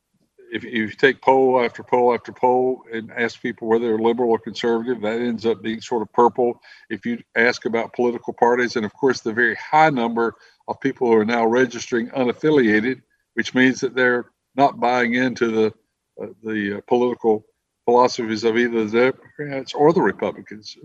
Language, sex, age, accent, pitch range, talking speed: English, male, 60-79, American, 115-130 Hz, 180 wpm